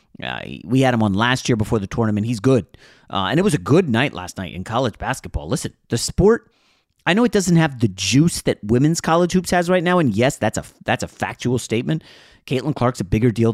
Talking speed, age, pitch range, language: 240 wpm, 30-49, 105-140 Hz, English